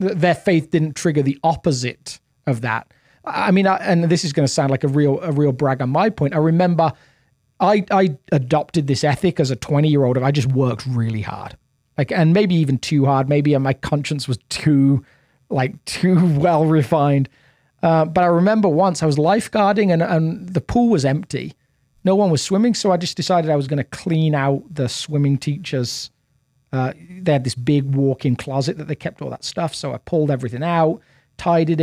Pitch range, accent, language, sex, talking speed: 135-165 Hz, British, English, male, 200 wpm